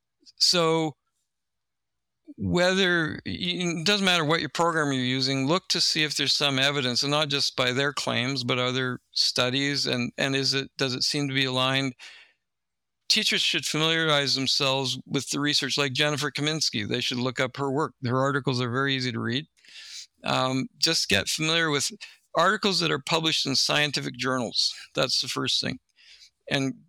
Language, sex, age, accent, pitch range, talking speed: English, male, 50-69, American, 130-160 Hz, 170 wpm